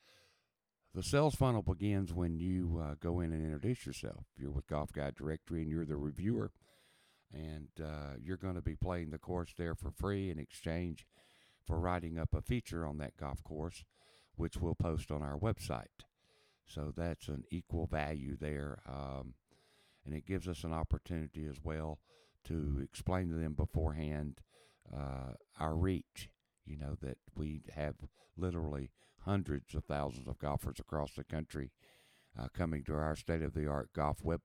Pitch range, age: 75-90 Hz, 60-79